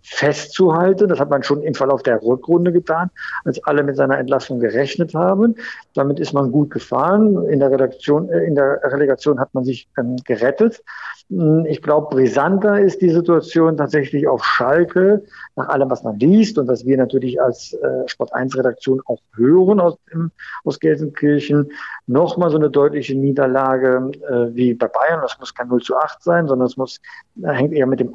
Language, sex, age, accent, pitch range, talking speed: German, male, 50-69, German, 130-160 Hz, 180 wpm